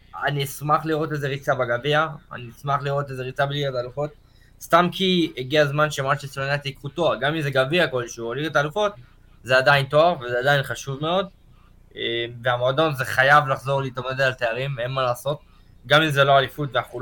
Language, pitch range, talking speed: Hebrew, 120-150 Hz, 185 wpm